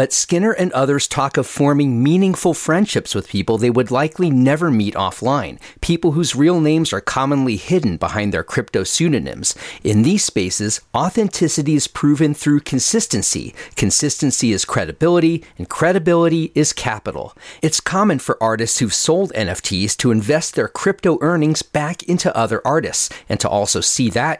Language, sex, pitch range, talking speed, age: English, male, 110-165 Hz, 155 wpm, 40-59